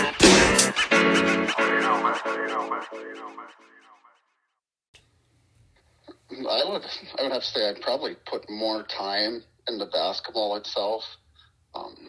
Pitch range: 105-115 Hz